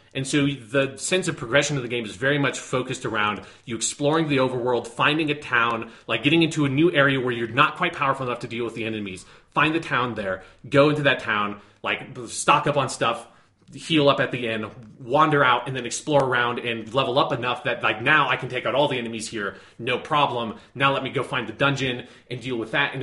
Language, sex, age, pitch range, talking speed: English, male, 30-49, 110-135 Hz, 235 wpm